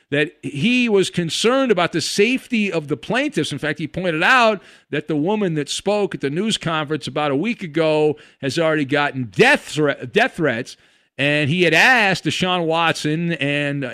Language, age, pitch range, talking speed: English, 50-69, 150-205 Hz, 175 wpm